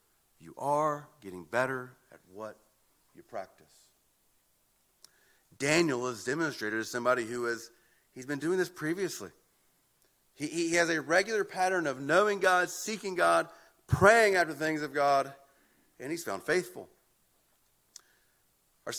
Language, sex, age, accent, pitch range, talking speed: English, male, 40-59, American, 145-200 Hz, 125 wpm